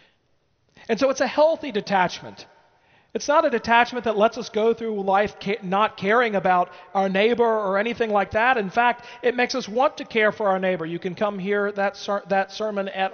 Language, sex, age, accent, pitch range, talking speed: English, male, 40-59, American, 180-230 Hz, 200 wpm